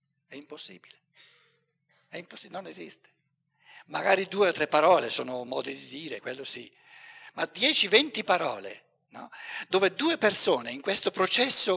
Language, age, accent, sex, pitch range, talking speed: Italian, 60-79, native, male, 150-215 Hz, 145 wpm